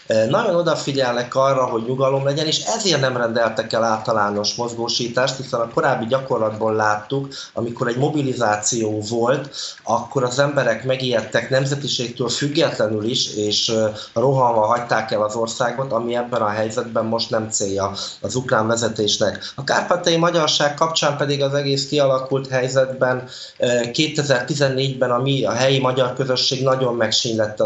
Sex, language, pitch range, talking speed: male, Hungarian, 110-135 Hz, 135 wpm